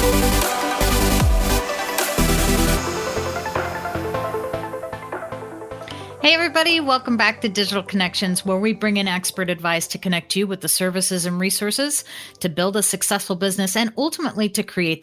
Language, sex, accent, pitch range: English, female, American, 180-225 Hz